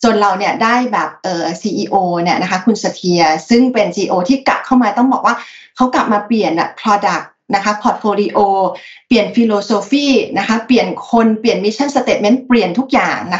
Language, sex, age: Thai, female, 20-39